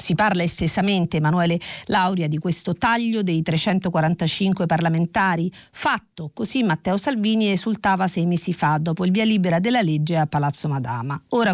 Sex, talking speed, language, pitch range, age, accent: female, 150 wpm, Italian, 165-205 Hz, 40-59, native